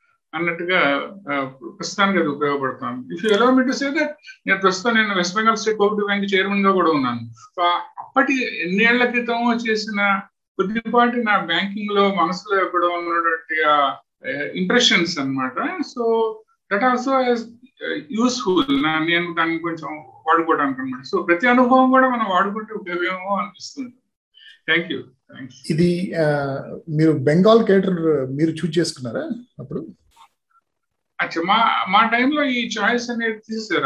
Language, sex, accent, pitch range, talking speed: Telugu, male, native, 160-230 Hz, 110 wpm